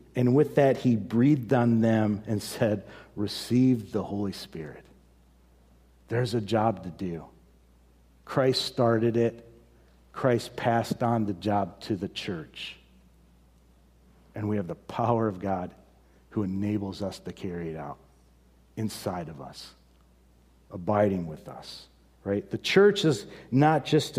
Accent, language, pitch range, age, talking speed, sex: American, English, 95-130 Hz, 50-69, 135 wpm, male